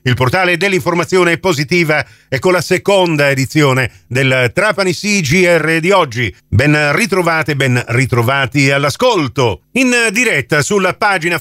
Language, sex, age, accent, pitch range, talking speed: Italian, male, 50-69, native, 120-165 Hz, 125 wpm